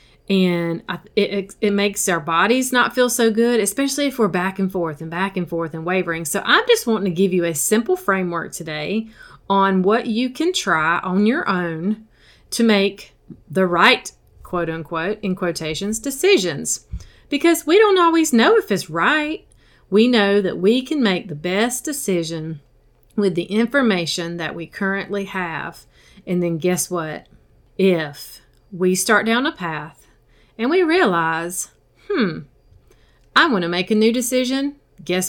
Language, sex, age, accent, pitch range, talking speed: English, female, 40-59, American, 170-230 Hz, 165 wpm